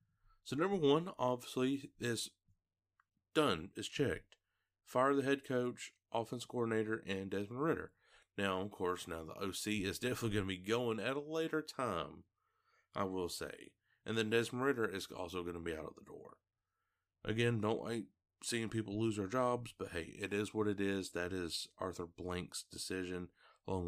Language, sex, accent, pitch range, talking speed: English, male, American, 95-120 Hz, 175 wpm